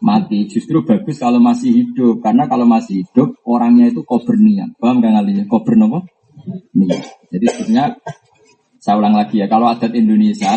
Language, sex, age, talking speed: Malay, male, 20-39, 165 wpm